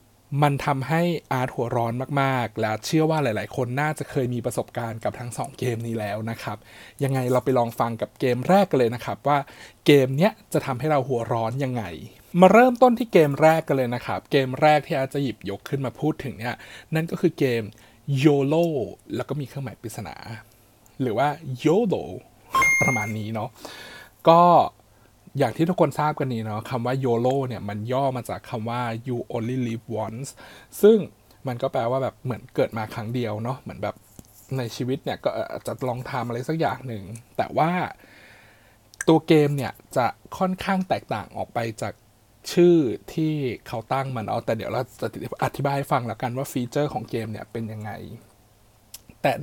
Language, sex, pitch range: Thai, male, 115-145 Hz